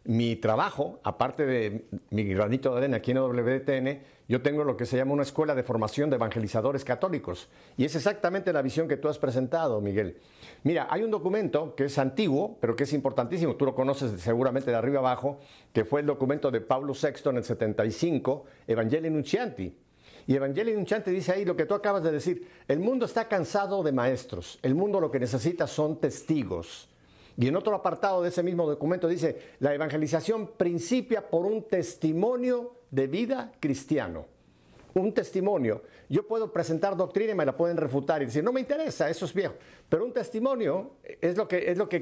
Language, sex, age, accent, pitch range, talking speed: Spanish, male, 50-69, Mexican, 130-185 Hz, 190 wpm